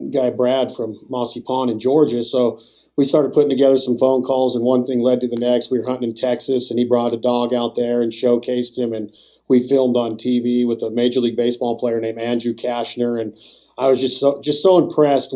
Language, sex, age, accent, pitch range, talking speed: English, male, 40-59, American, 120-135 Hz, 230 wpm